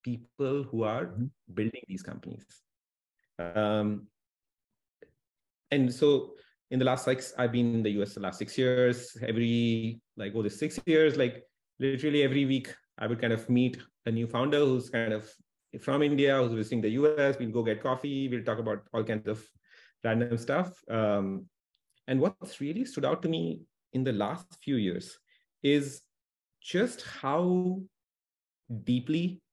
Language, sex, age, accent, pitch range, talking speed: English, male, 30-49, Indian, 105-130 Hz, 165 wpm